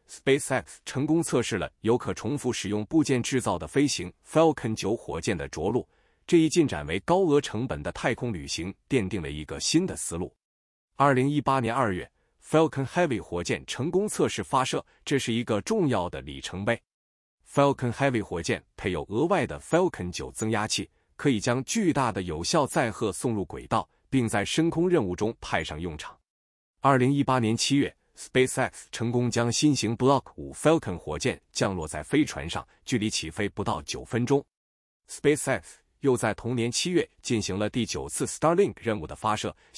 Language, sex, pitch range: Chinese, male, 95-135 Hz